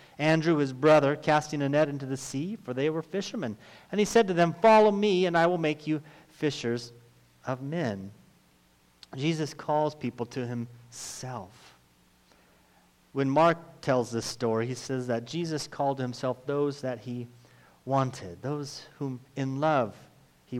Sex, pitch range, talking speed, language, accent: male, 115-155 Hz, 155 wpm, English, American